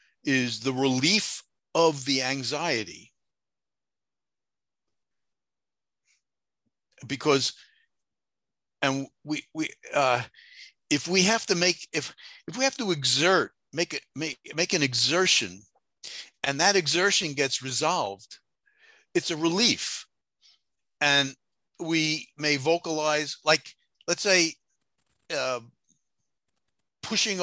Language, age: English, 50-69